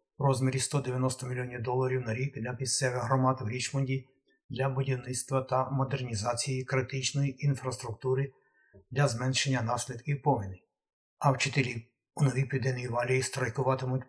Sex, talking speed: male, 125 wpm